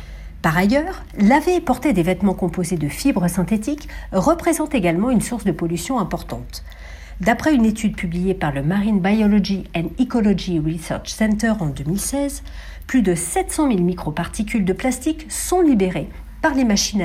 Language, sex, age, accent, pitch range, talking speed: French, female, 50-69, French, 170-250 Hz, 155 wpm